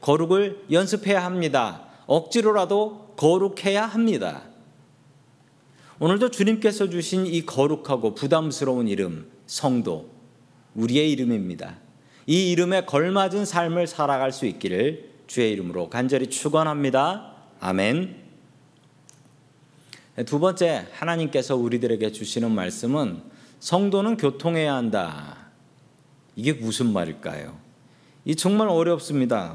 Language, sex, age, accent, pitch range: Korean, male, 40-59, native, 135-200 Hz